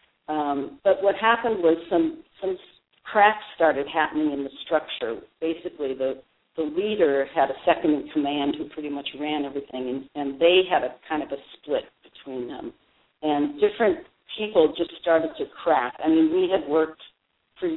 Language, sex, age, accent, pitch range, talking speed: English, female, 50-69, American, 140-185 Hz, 170 wpm